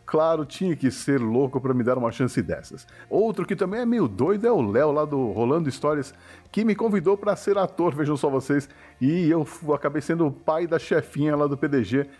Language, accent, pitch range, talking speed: Portuguese, Brazilian, 140-195 Hz, 215 wpm